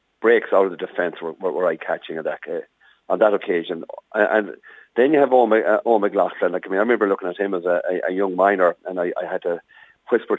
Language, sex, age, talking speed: English, male, 50-69, 250 wpm